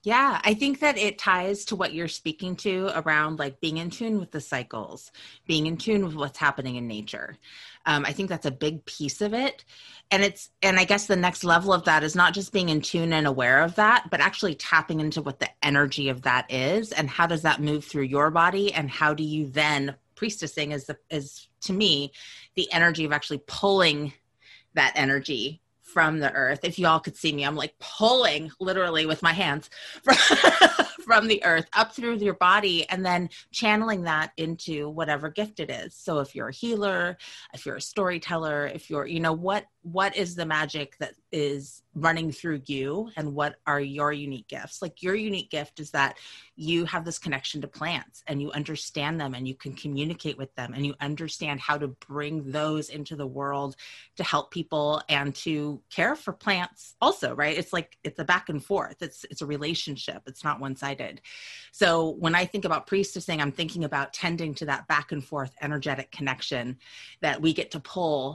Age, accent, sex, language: 30-49, American, female, English